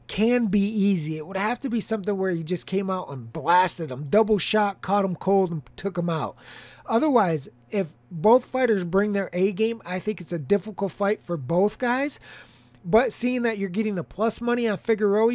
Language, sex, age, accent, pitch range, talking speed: English, male, 30-49, American, 180-220 Hz, 205 wpm